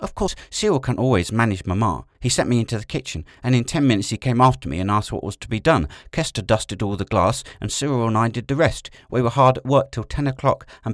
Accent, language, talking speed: British, English, 270 wpm